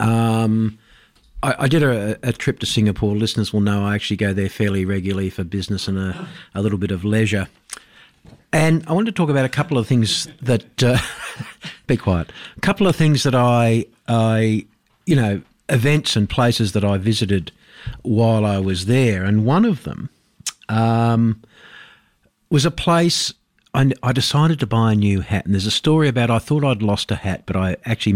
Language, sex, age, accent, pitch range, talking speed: English, male, 50-69, Australian, 100-130 Hz, 190 wpm